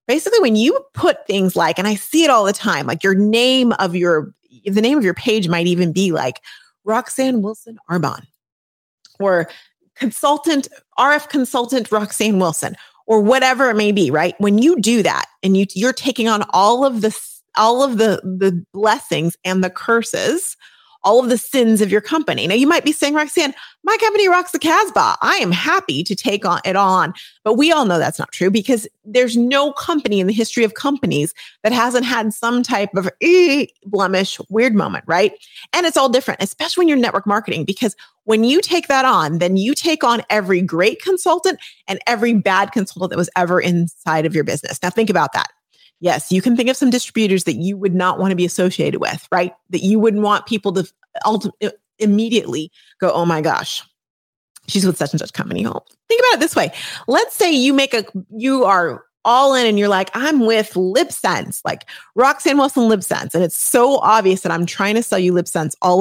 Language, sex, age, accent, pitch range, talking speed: English, female, 30-49, American, 185-260 Hz, 200 wpm